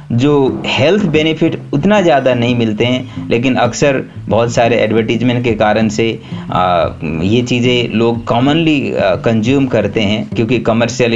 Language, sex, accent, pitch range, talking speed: Hindi, male, native, 105-125 Hz, 135 wpm